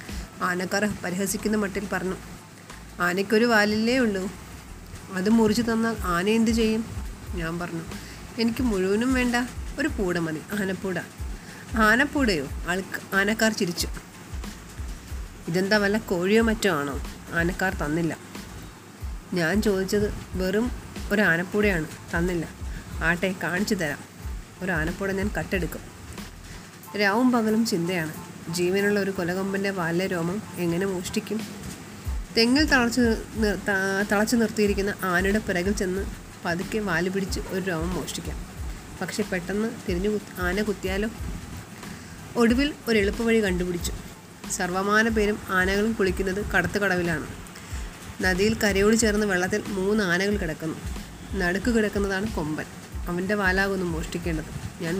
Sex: female